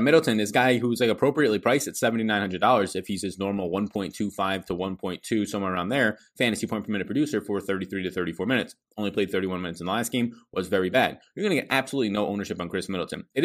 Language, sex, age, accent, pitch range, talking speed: English, male, 20-39, American, 100-115 Hz, 230 wpm